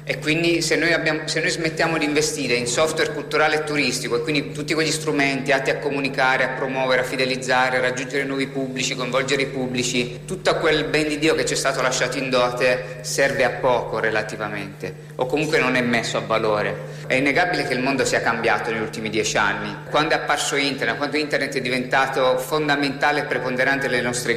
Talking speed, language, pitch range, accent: 200 wpm, Italian, 130-155 Hz, native